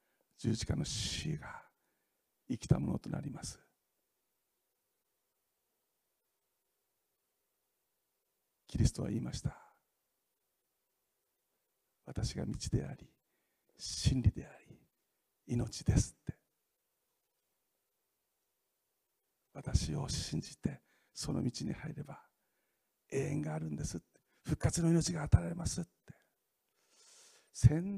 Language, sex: Japanese, male